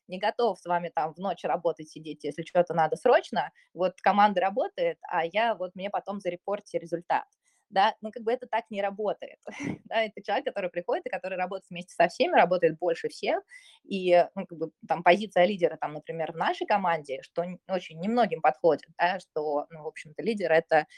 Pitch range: 170-210 Hz